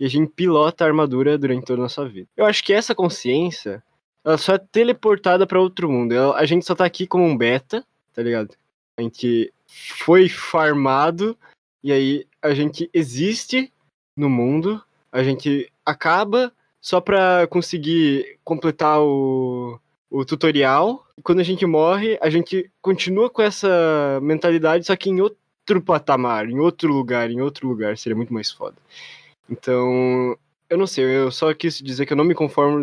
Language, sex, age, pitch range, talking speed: Portuguese, male, 20-39, 120-165 Hz, 170 wpm